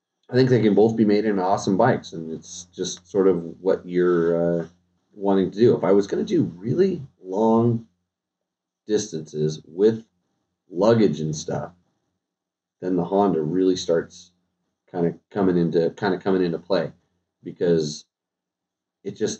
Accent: American